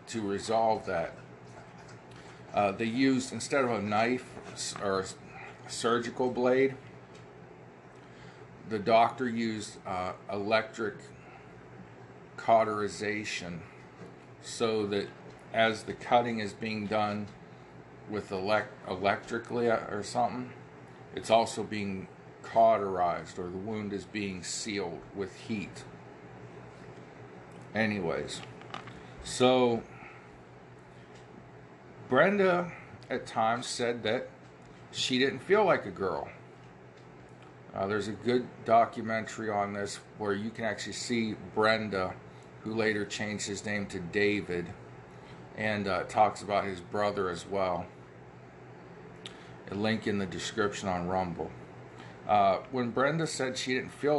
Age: 50-69